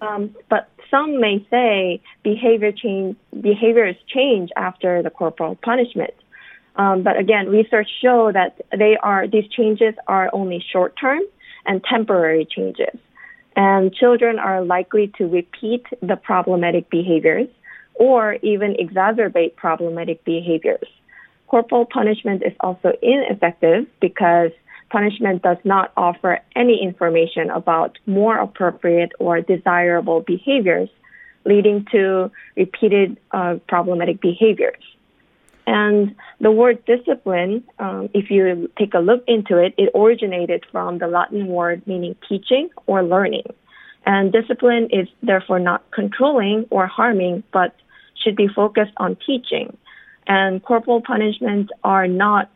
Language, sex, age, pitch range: Korean, female, 20-39, 180-235 Hz